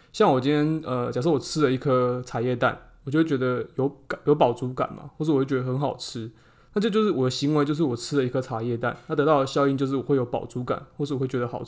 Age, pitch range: 20-39, 125-150 Hz